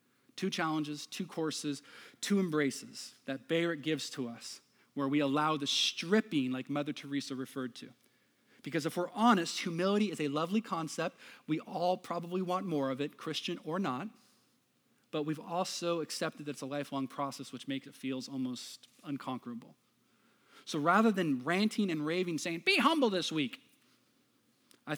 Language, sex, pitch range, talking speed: English, male, 140-180 Hz, 160 wpm